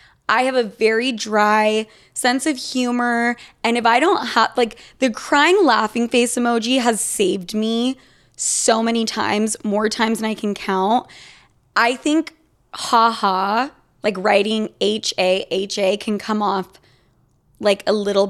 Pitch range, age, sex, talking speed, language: 205-250 Hz, 20-39, female, 140 wpm, English